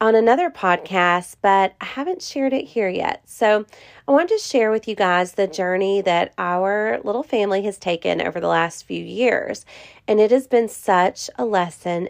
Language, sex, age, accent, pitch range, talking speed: English, female, 30-49, American, 180-230 Hz, 190 wpm